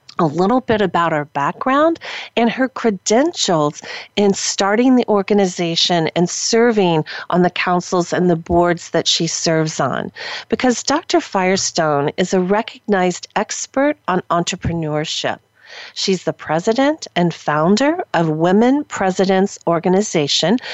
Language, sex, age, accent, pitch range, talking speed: English, female, 40-59, American, 170-225 Hz, 125 wpm